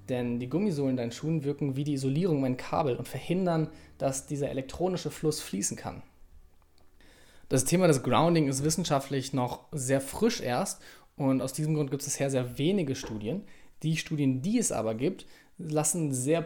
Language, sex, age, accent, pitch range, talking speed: German, male, 20-39, German, 130-160 Hz, 175 wpm